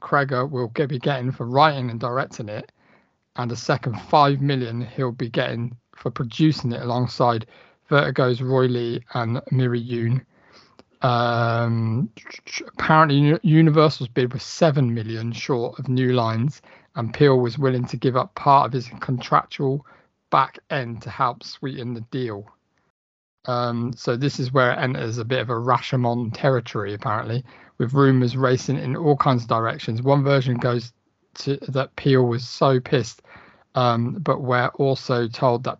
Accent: British